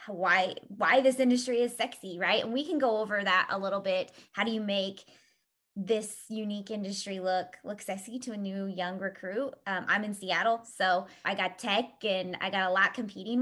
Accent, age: American, 20-39